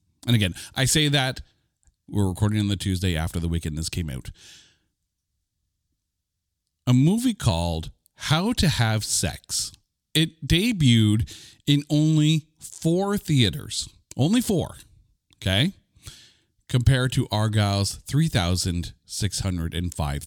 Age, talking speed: 40-59, 105 wpm